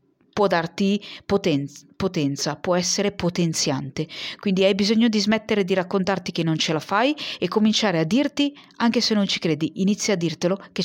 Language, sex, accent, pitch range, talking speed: Italian, female, native, 170-210 Hz, 175 wpm